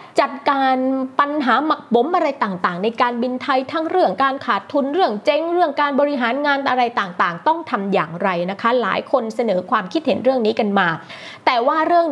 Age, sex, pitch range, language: 20-39, female, 210-285 Hz, Thai